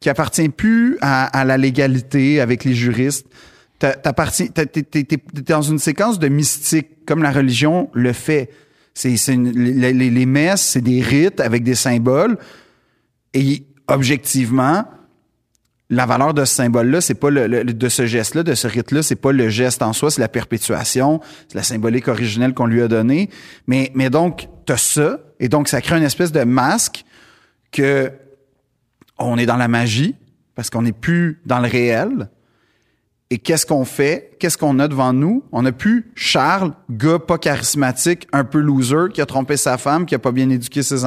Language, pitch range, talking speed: French, 125-150 Hz, 190 wpm